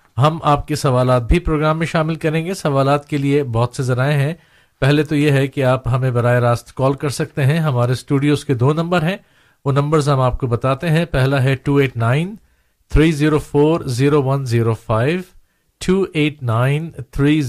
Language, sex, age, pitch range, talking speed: Urdu, male, 50-69, 125-150 Hz, 160 wpm